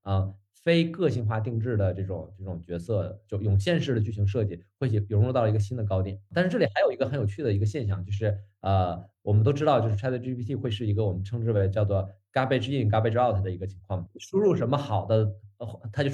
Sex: male